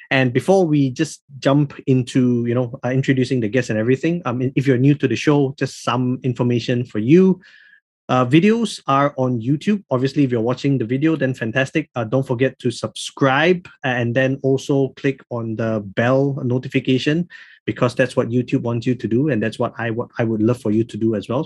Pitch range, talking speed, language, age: 120-145 Hz, 210 wpm, English, 20-39